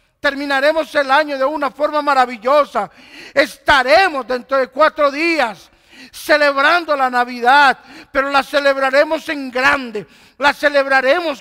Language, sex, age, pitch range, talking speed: Spanish, male, 50-69, 180-255 Hz, 115 wpm